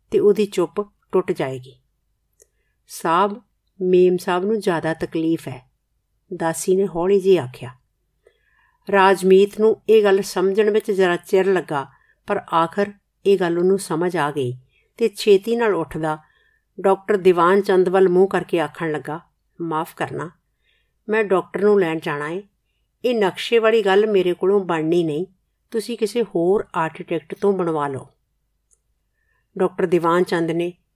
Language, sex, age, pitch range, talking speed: Punjabi, female, 50-69, 165-210 Hz, 125 wpm